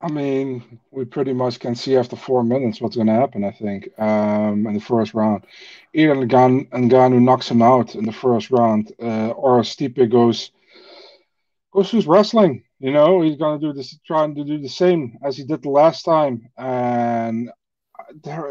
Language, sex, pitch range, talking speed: English, male, 115-145 Hz, 190 wpm